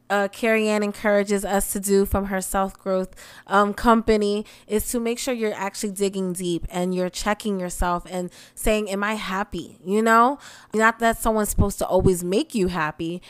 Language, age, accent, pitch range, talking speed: English, 20-39, American, 195-235 Hz, 185 wpm